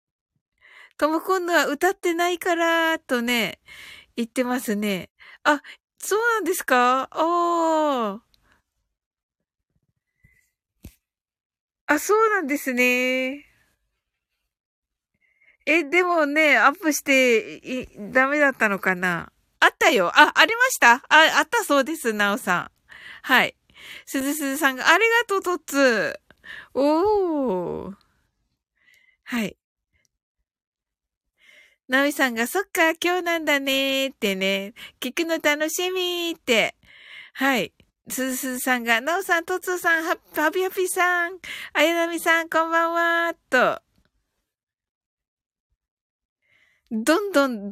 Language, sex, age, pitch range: Japanese, female, 50-69, 250-340 Hz